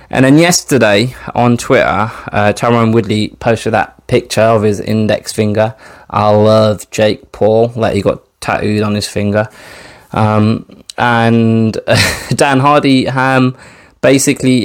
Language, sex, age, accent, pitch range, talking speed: English, male, 20-39, British, 100-120 Hz, 135 wpm